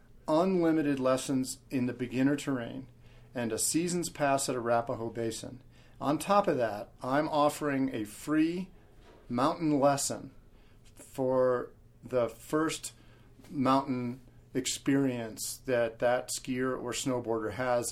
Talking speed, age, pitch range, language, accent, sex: 115 wpm, 50-69, 120-140 Hz, English, American, male